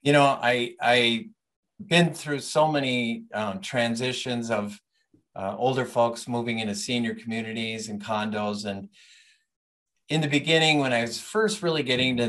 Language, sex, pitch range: English, male, 110-140 Hz